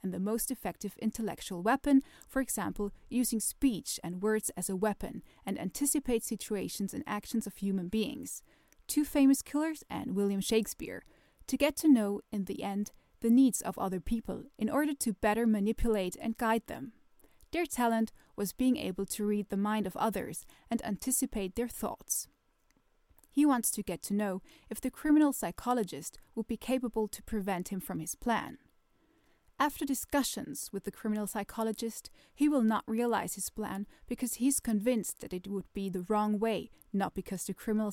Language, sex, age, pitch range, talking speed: English, female, 20-39, 205-255 Hz, 170 wpm